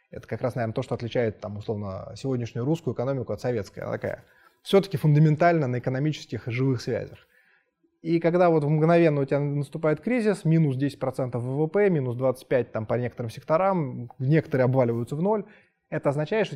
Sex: male